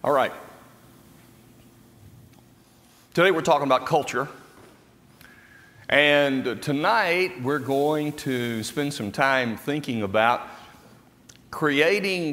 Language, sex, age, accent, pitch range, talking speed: English, male, 50-69, American, 115-140 Hz, 90 wpm